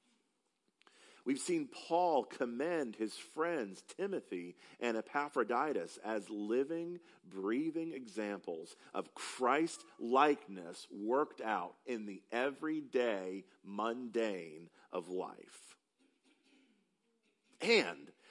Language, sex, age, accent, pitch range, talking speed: English, male, 40-59, American, 125-200 Hz, 80 wpm